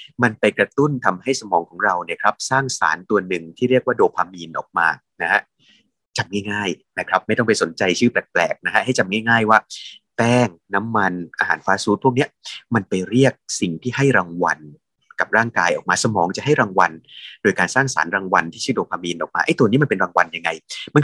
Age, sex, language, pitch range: 20-39, male, Thai, 95-130 Hz